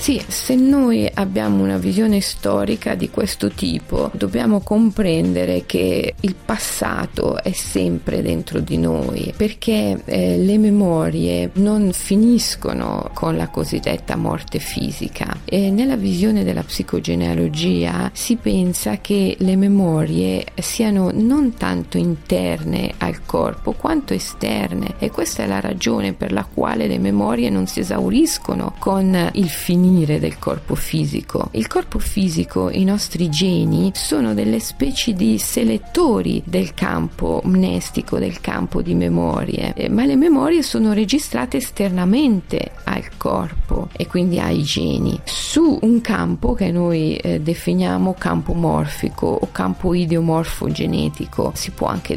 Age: 40-59